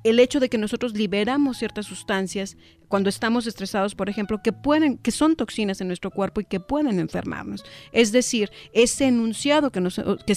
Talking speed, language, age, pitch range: 185 wpm, English, 40-59, 190-240 Hz